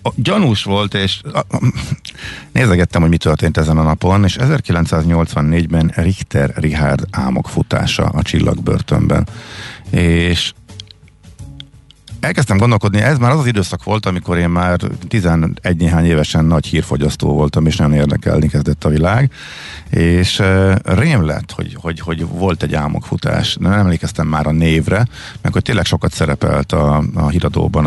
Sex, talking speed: male, 140 wpm